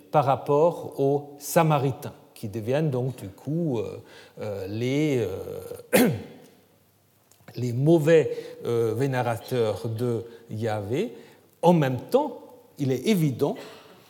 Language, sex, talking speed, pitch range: French, male, 105 wpm, 125-190 Hz